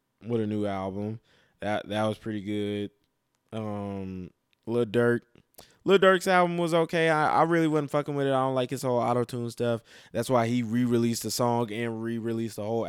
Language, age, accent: English, 20-39, American